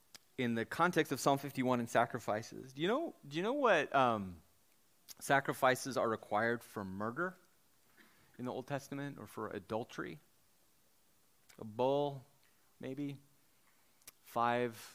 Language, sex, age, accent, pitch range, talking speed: English, male, 30-49, American, 115-140 Hz, 130 wpm